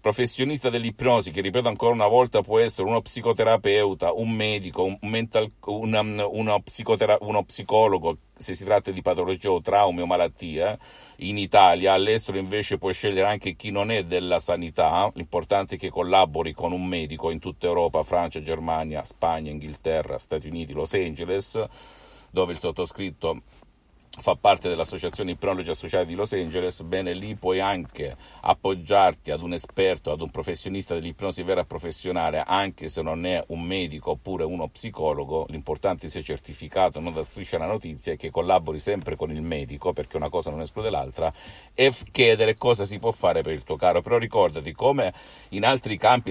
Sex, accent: male, native